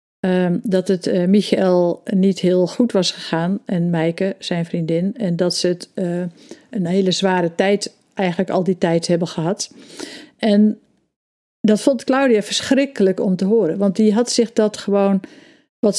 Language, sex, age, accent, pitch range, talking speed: Dutch, female, 50-69, Dutch, 180-225 Hz, 160 wpm